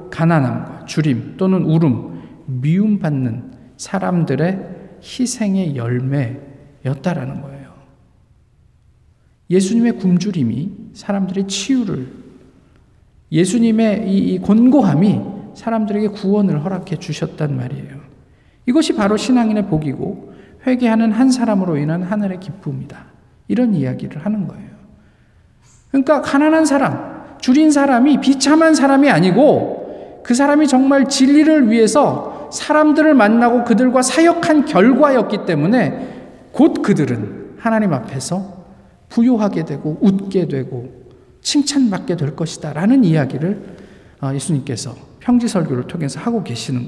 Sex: male